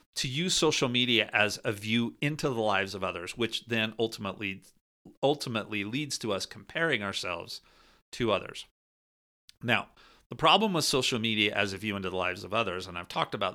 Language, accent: English, American